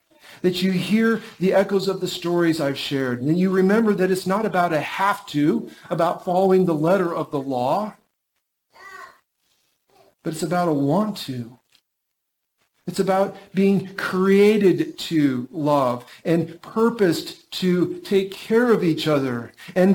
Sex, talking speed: male, 140 wpm